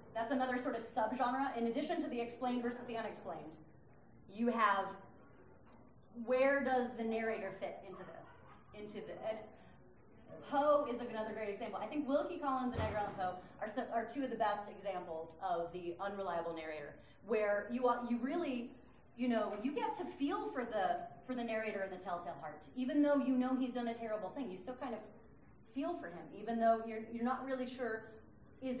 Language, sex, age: English, female, 30-49